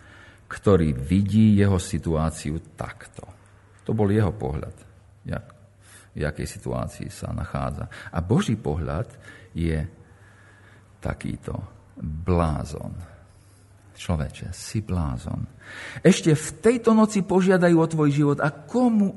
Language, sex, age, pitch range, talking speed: Slovak, male, 50-69, 95-150 Hz, 105 wpm